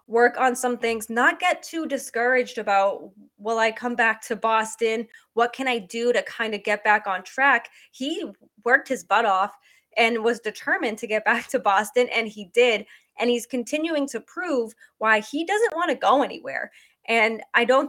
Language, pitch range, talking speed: English, 215-255 Hz, 190 wpm